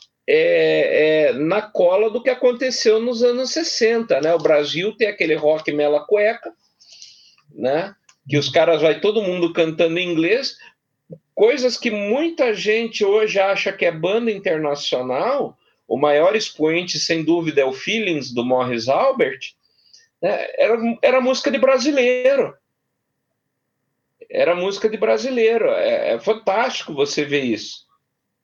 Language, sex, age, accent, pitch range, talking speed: Portuguese, male, 50-69, Brazilian, 155-255 Hz, 135 wpm